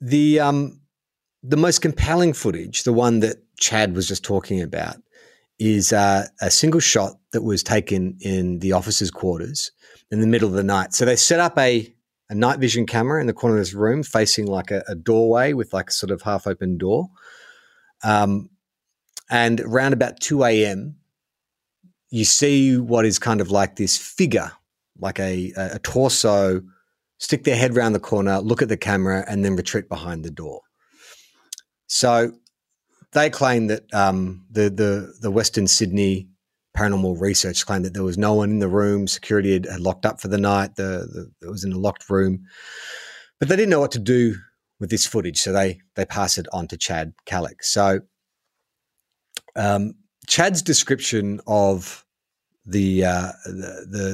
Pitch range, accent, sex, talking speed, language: 95-120 Hz, Australian, male, 175 wpm, English